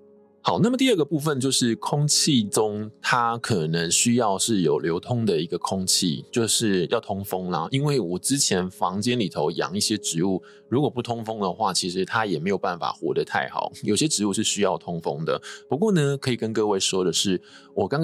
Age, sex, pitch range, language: 20-39, male, 90-140 Hz, Chinese